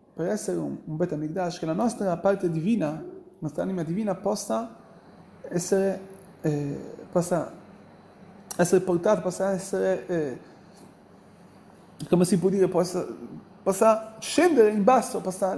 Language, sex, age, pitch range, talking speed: Italian, male, 30-49, 185-235 Hz, 130 wpm